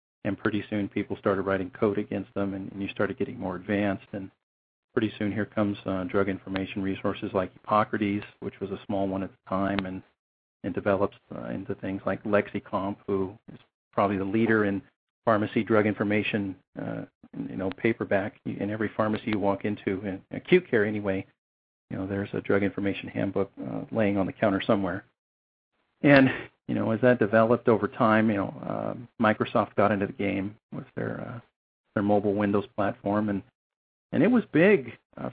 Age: 40-59